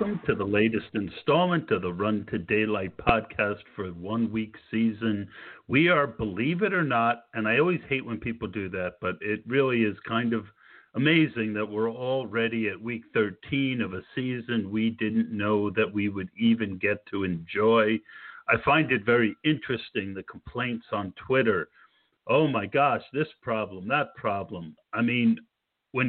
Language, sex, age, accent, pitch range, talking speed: English, male, 50-69, American, 105-140 Hz, 170 wpm